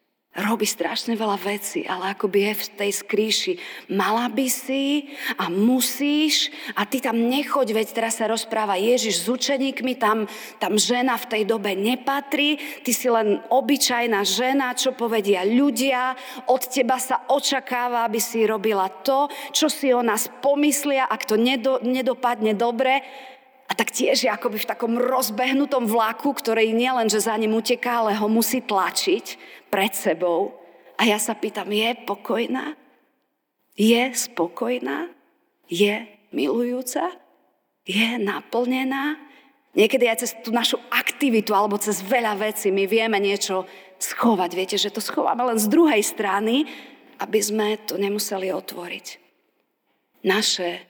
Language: Slovak